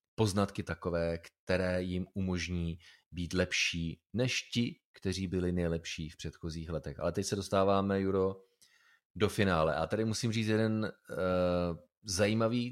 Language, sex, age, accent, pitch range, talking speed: Czech, male, 30-49, native, 85-100 Hz, 130 wpm